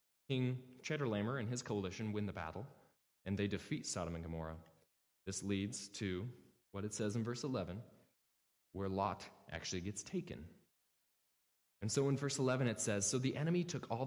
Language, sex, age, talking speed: English, male, 20-39, 170 wpm